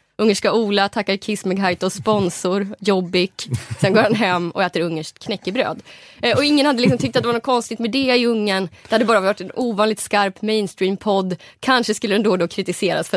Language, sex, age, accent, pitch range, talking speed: Swedish, female, 20-39, native, 170-215 Hz, 195 wpm